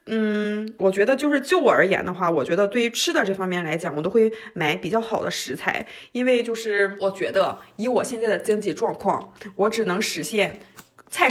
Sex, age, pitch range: female, 20-39, 185-230 Hz